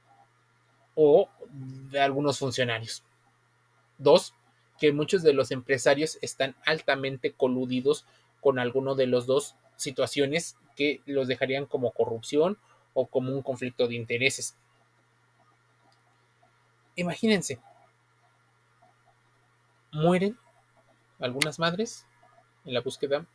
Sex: male